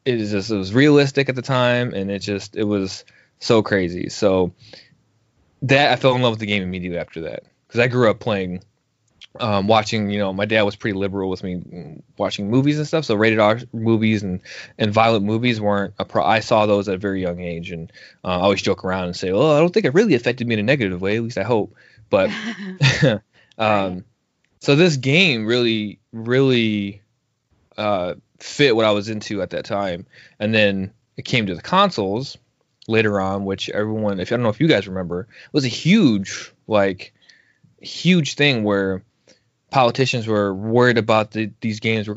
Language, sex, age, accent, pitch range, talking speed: English, male, 20-39, American, 100-120 Hz, 200 wpm